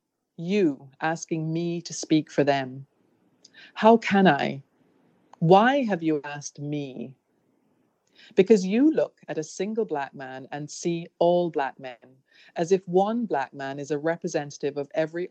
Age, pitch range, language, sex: 40-59, 145-175 Hz, English, female